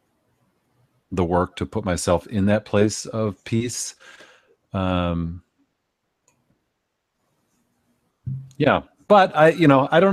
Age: 40-59